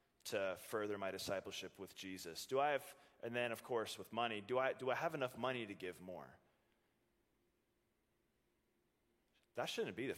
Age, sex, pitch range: 20-39, male, 105-135 Hz